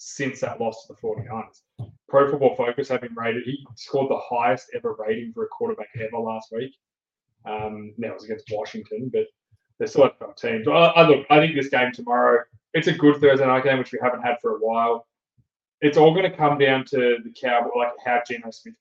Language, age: English, 20-39